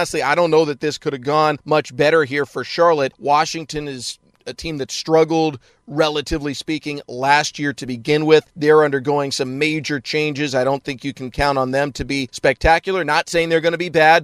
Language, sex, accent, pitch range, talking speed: English, male, American, 140-160 Hz, 215 wpm